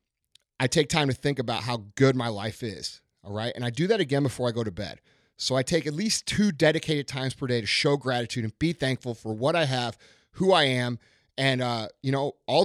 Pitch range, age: 115-155 Hz, 30-49